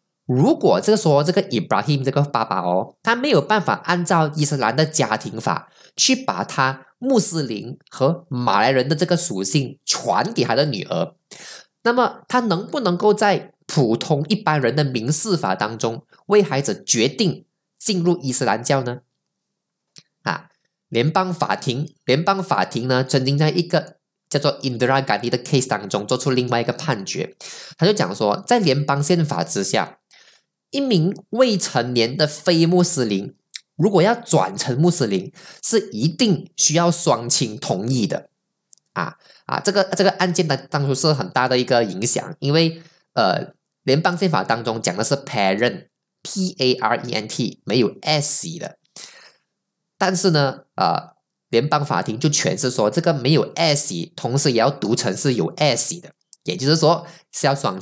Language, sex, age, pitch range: Chinese, male, 10-29, 130-185 Hz